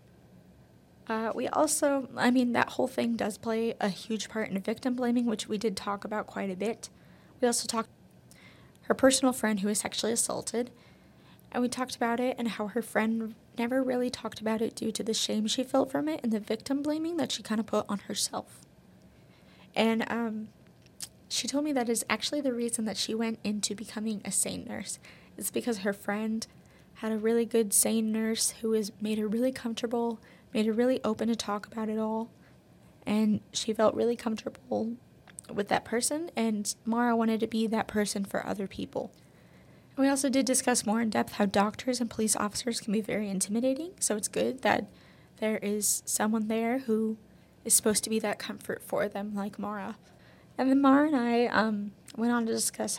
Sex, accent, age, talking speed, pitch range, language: female, American, 20-39, 195 wpm, 210-240 Hz, English